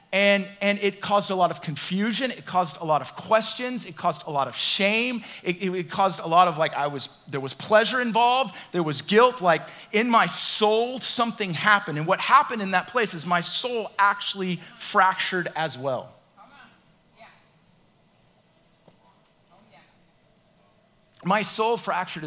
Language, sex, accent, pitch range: English, male, American, 180-230 Hz